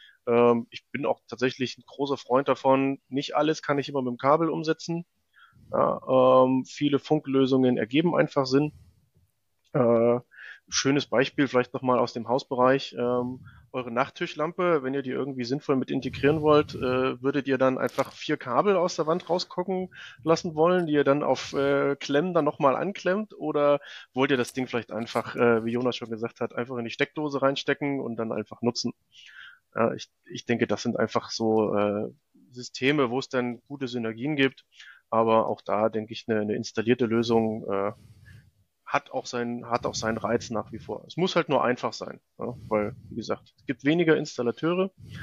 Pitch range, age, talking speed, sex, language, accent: 120-150 Hz, 30-49, 180 wpm, male, German, German